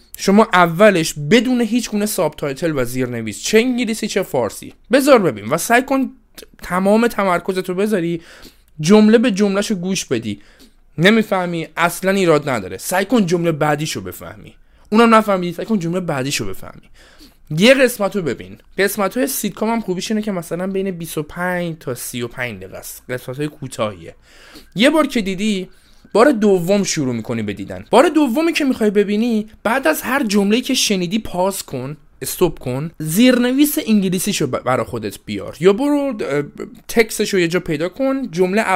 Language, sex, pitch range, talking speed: Persian, male, 155-220 Hz, 165 wpm